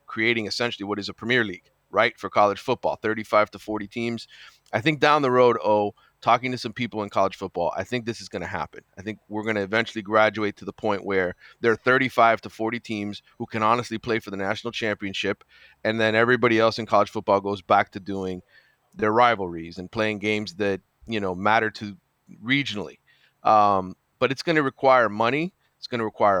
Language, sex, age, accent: English, male, 30-49, American